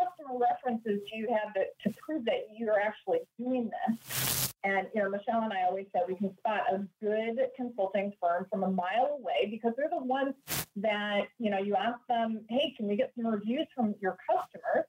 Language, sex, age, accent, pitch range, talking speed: English, female, 30-49, American, 195-245 Hz, 205 wpm